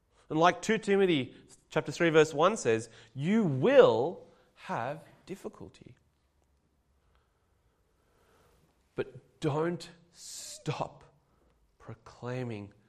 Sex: male